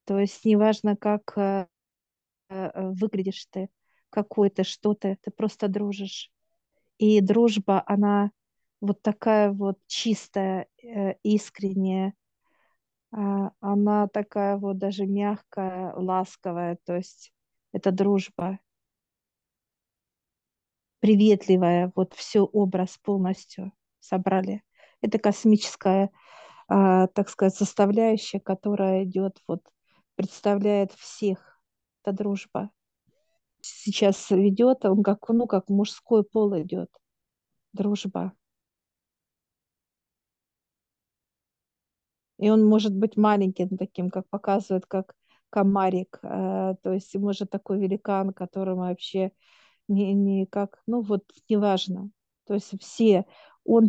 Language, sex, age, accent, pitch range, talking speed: Russian, female, 40-59, native, 190-210 Hz, 100 wpm